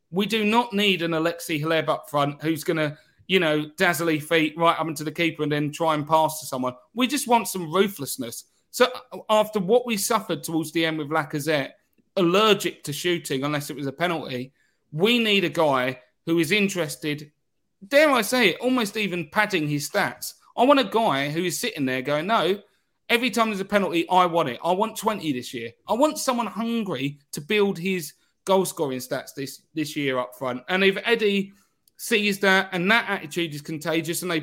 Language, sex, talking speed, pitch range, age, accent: English, male, 200 wpm, 145-190 Hz, 30-49, British